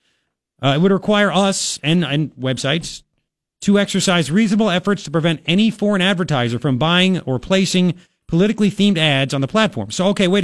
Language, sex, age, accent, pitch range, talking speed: English, male, 30-49, American, 140-200 Hz, 170 wpm